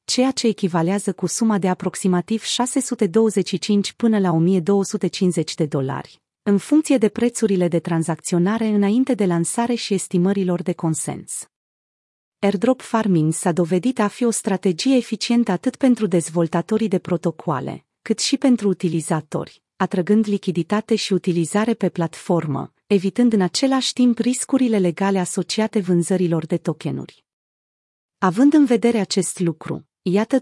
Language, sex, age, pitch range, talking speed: Romanian, female, 30-49, 175-225 Hz, 130 wpm